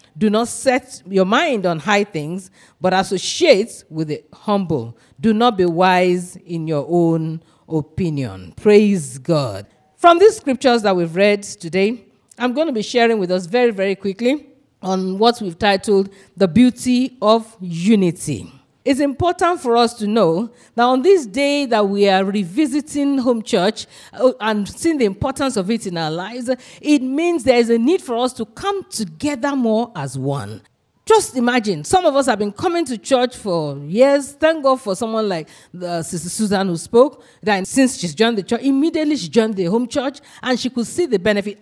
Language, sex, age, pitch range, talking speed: English, female, 40-59, 185-265 Hz, 180 wpm